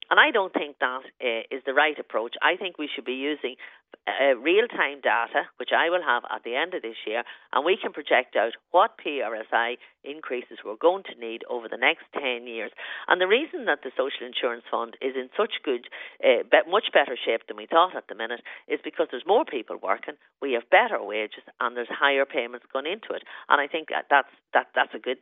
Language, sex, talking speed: English, female, 220 wpm